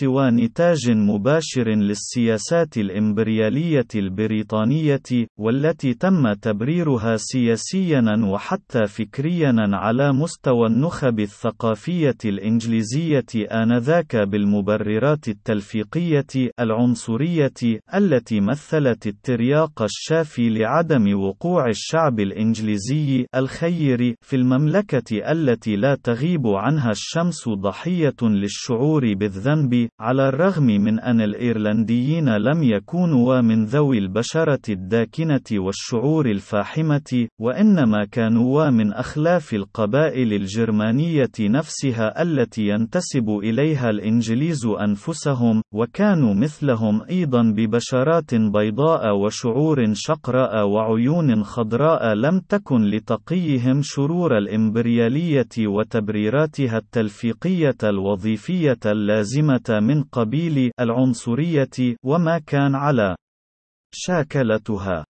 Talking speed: 80 wpm